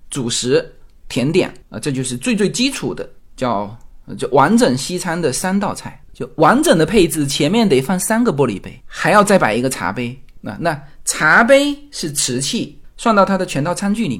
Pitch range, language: 140-225 Hz, Chinese